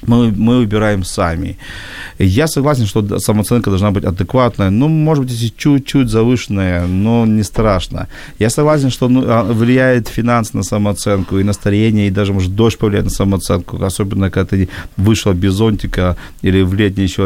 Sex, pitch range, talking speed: male, 95-120 Hz, 165 wpm